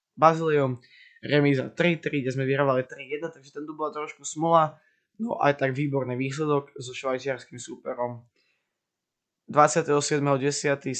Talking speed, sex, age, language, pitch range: 120 wpm, male, 20-39, Slovak, 125-145 Hz